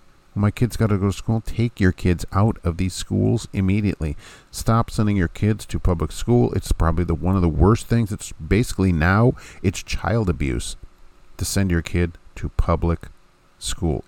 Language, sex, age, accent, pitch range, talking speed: English, male, 50-69, American, 80-105 Hz, 185 wpm